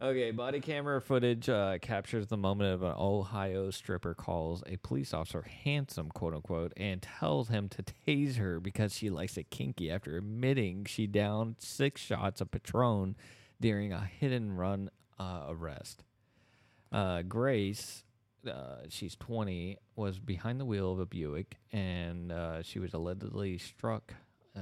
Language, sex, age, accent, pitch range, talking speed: English, male, 30-49, American, 95-115 Hz, 145 wpm